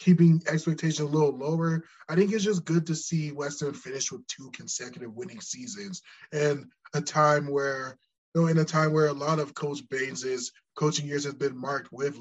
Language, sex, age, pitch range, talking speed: English, male, 20-39, 130-165 Hz, 195 wpm